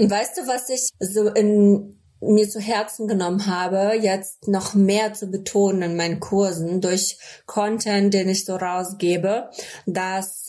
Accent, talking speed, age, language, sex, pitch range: German, 150 wpm, 20-39, German, female, 175-220 Hz